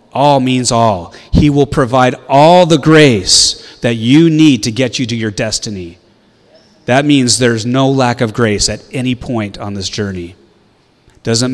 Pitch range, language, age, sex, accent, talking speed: 105-130 Hz, English, 30-49, male, American, 165 wpm